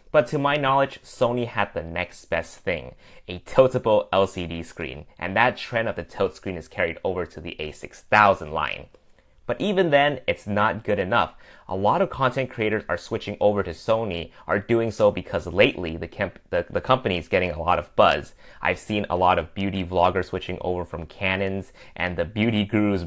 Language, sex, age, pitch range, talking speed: English, male, 20-39, 90-110 Hz, 200 wpm